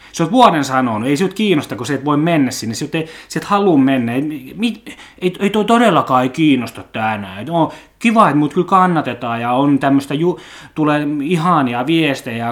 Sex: male